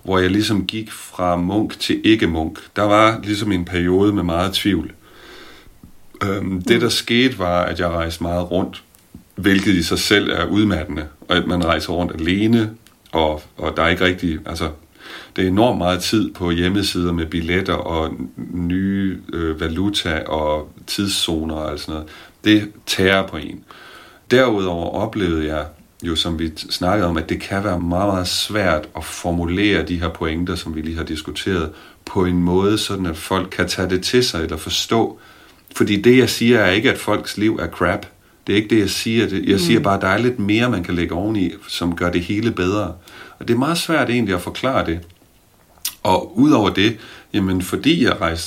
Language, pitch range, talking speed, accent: Danish, 85-105 Hz, 195 wpm, native